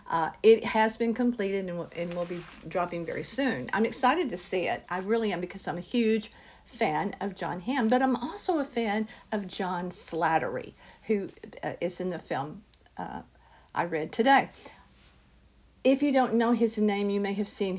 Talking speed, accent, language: 190 wpm, American, English